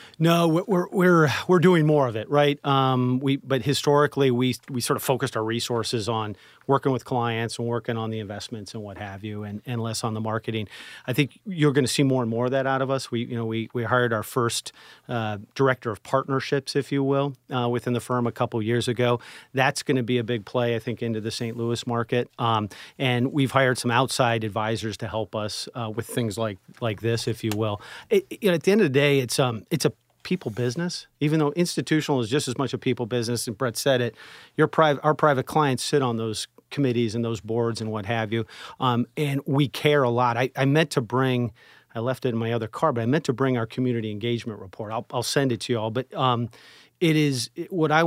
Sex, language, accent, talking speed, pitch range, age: male, English, American, 245 wpm, 115-140 Hz, 40-59